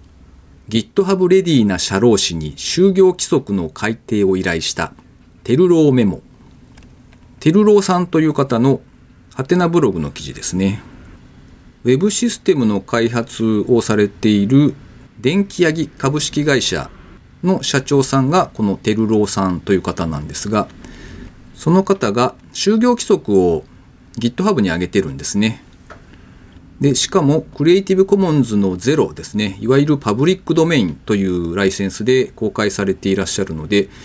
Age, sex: 40-59, male